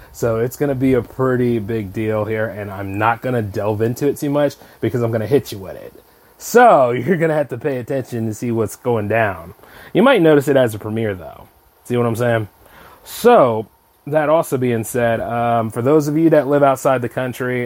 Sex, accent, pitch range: male, American, 115-140 Hz